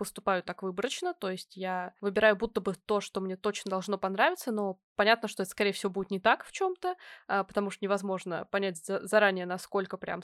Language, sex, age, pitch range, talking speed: Russian, female, 20-39, 195-235 Hz, 200 wpm